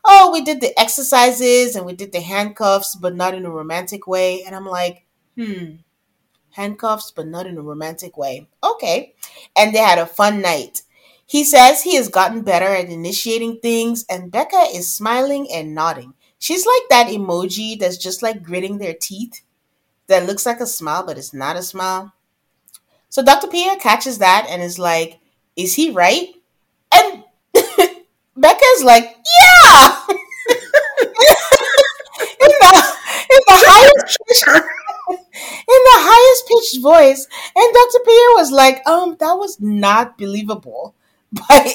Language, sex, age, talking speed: English, female, 30-49, 150 wpm